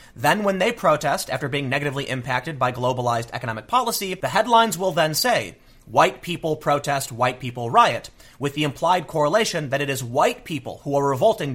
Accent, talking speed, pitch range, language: American, 180 wpm, 125-170 Hz, English